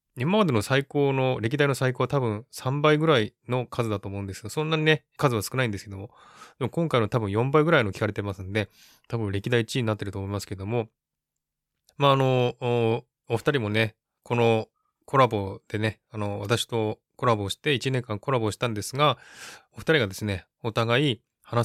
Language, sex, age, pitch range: Japanese, male, 20-39, 105-130 Hz